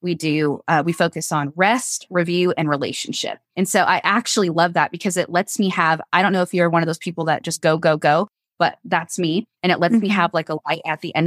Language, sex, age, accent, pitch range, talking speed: English, female, 20-39, American, 165-205 Hz, 260 wpm